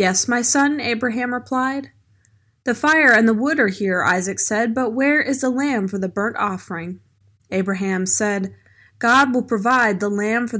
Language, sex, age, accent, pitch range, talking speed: English, female, 20-39, American, 175-230 Hz, 175 wpm